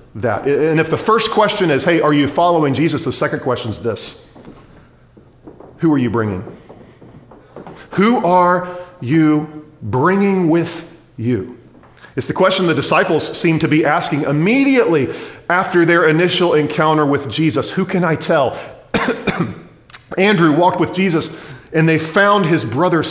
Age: 40-59